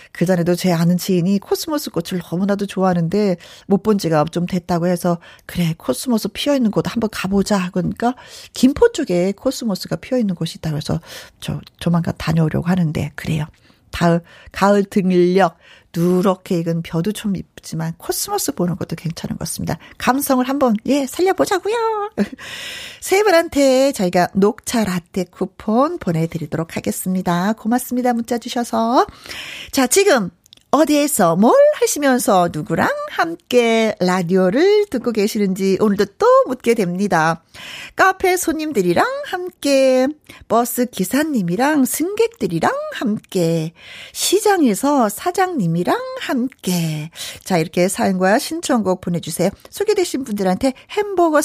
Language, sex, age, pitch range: Korean, female, 40-59, 180-280 Hz